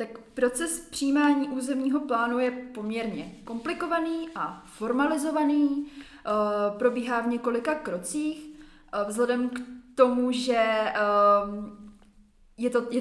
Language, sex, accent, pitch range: Czech, female, native, 210-260 Hz